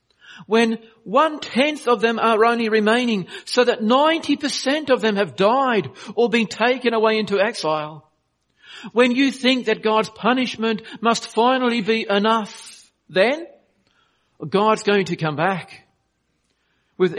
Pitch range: 180-225 Hz